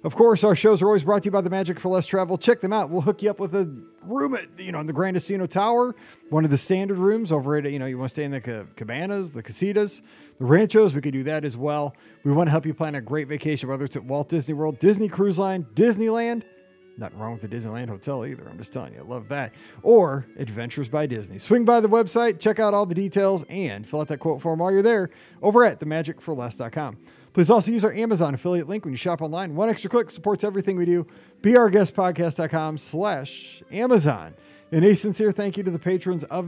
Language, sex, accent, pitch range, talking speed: English, male, American, 145-200 Hz, 245 wpm